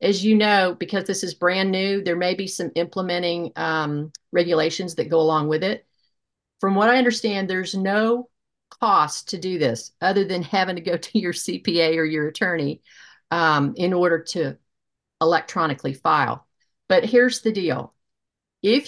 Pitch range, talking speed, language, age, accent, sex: 155-200 Hz, 165 wpm, English, 50-69, American, female